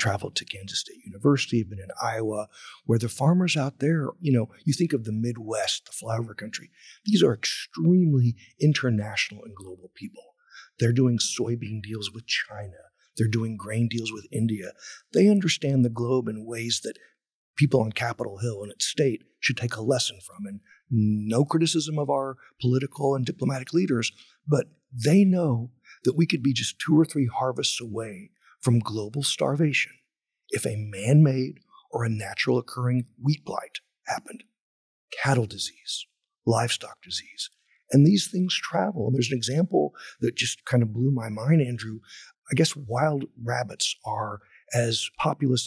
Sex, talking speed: male, 160 wpm